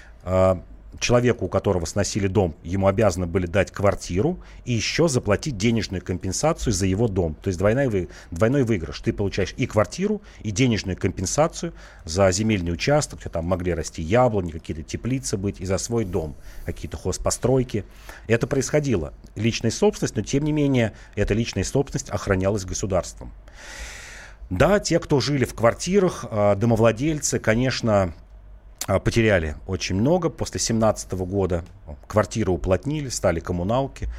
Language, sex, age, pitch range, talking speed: Russian, male, 40-59, 90-120 Hz, 135 wpm